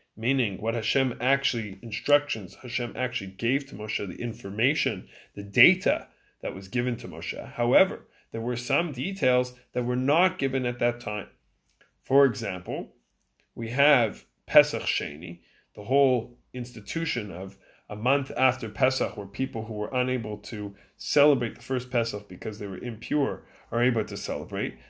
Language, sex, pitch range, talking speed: English, male, 105-135 Hz, 150 wpm